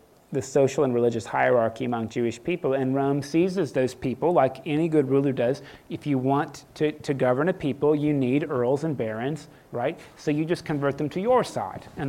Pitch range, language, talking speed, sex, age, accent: 140-185 Hz, English, 205 wpm, male, 30-49, American